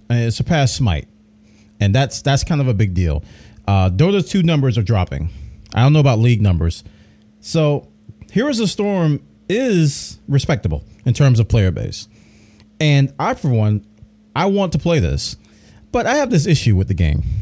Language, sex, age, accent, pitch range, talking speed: English, male, 40-59, American, 105-150 Hz, 180 wpm